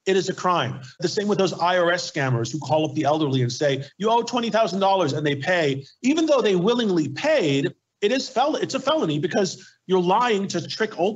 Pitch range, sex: 140-195 Hz, male